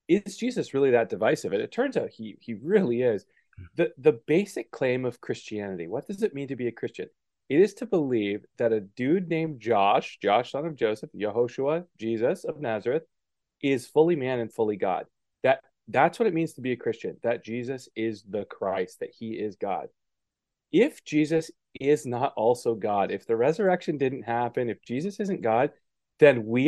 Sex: male